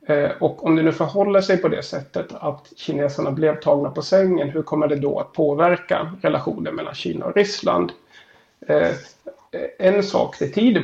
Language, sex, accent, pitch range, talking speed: Swedish, male, native, 140-170 Hz, 165 wpm